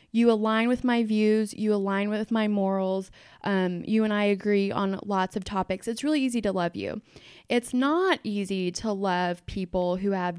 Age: 20-39